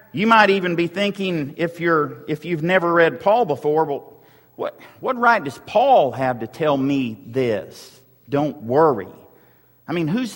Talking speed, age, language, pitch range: 170 wpm, 50-69, English, 170-220 Hz